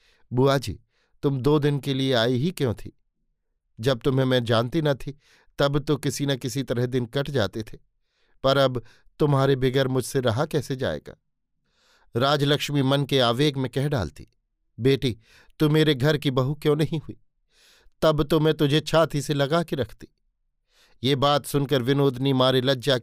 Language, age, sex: Hindi, 50-69, male